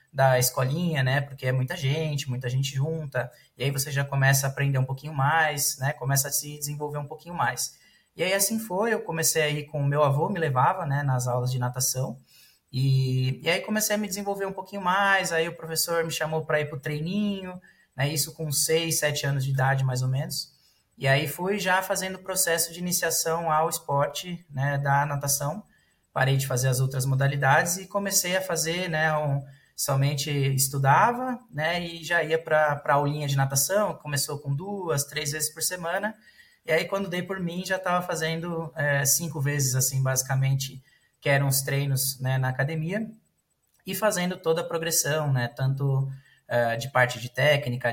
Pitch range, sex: 135-165 Hz, male